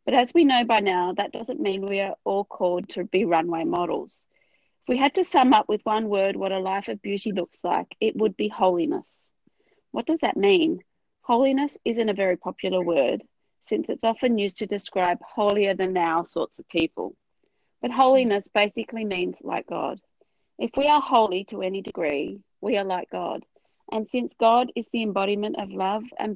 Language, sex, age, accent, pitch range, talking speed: English, female, 30-49, Australian, 185-235 Hz, 195 wpm